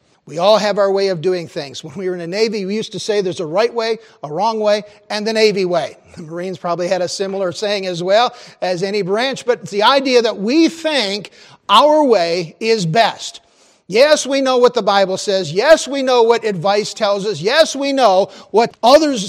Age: 50-69